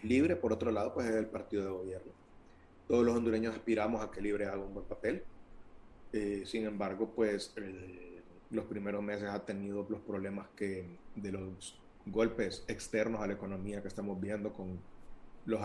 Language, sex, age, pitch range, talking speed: Spanish, male, 30-49, 95-110 Hz, 175 wpm